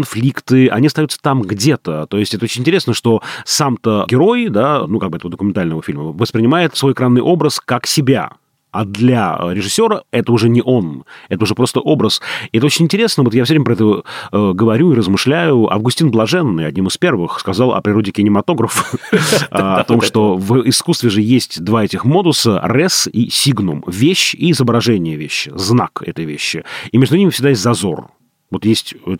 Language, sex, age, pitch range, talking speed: Russian, male, 30-49, 100-135 Hz, 180 wpm